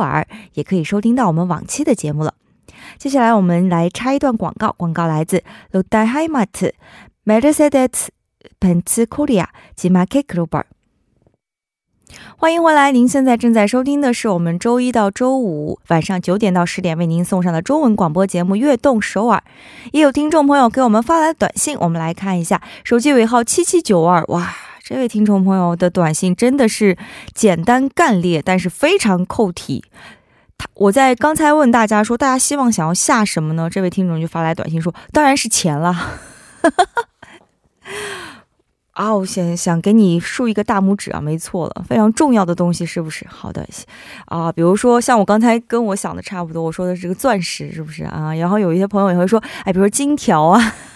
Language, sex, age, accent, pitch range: Korean, female, 20-39, Chinese, 175-250 Hz